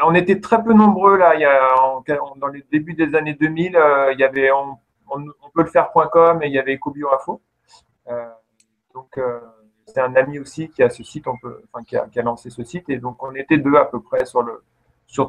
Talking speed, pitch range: 245 wpm, 130-160 Hz